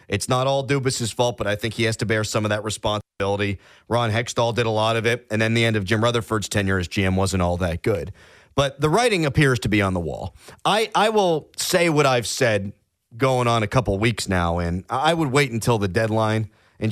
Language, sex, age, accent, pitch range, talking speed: English, male, 40-59, American, 100-155 Hz, 240 wpm